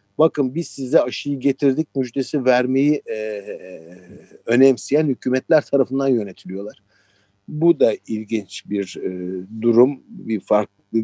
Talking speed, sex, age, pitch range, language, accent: 110 wpm, male, 50-69, 105-140 Hz, Turkish, native